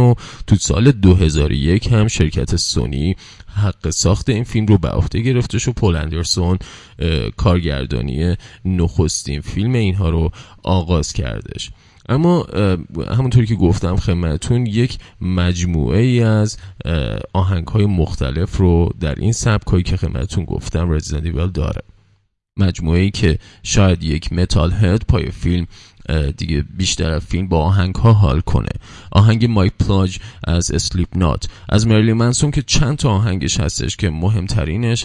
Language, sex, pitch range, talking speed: Persian, male, 85-110 Hz, 135 wpm